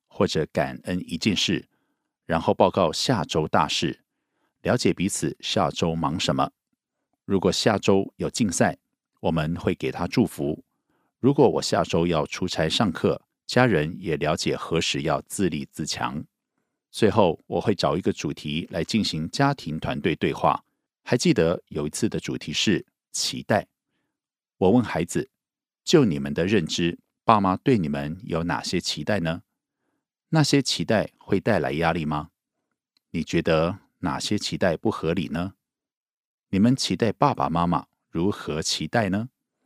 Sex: male